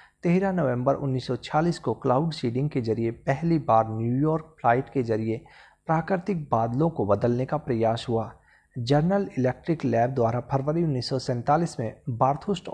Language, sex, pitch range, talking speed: Hindi, male, 120-150 Hz, 135 wpm